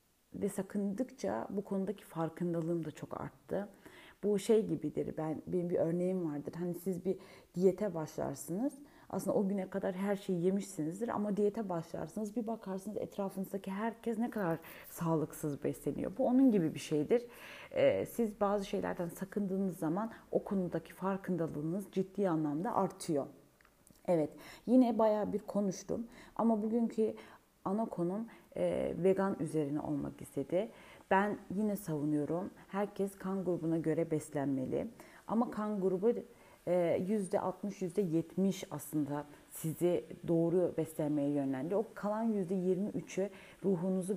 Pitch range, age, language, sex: 170-210 Hz, 30-49, Turkish, female